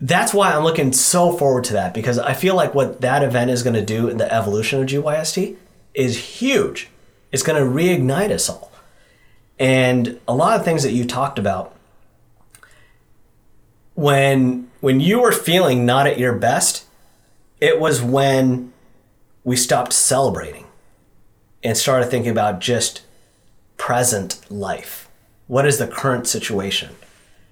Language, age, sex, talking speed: English, 30-49, male, 150 wpm